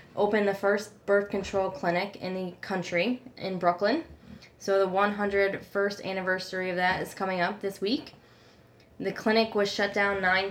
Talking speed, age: 160 wpm, 10-29